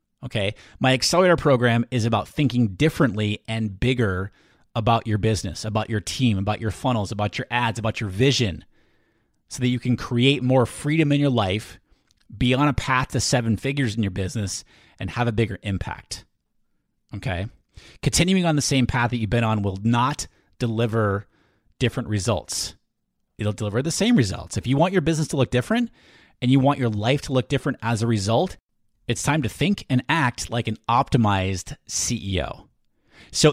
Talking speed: 180 wpm